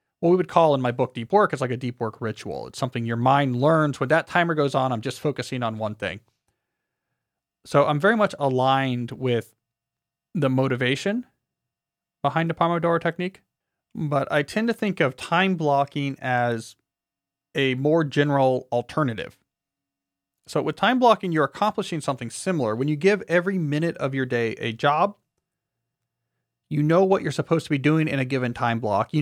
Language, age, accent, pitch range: English, 30-49, American, 125-165 Hz